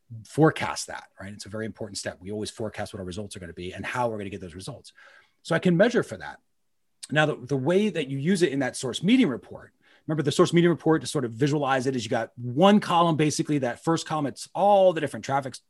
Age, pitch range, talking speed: 30-49, 115-155 Hz, 265 wpm